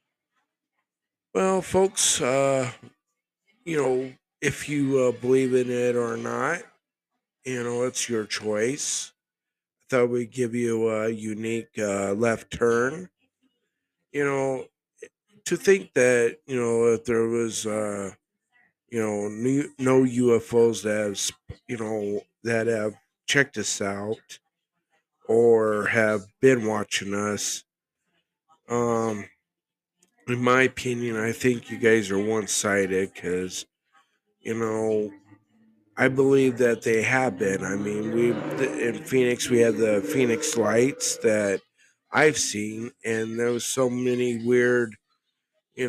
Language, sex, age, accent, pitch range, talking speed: English, male, 50-69, American, 110-130 Hz, 125 wpm